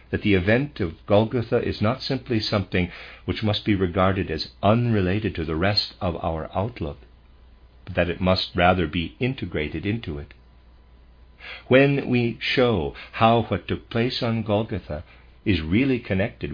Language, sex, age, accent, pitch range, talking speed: English, male, 50-69, American, 75-105 Hz, 150 wpm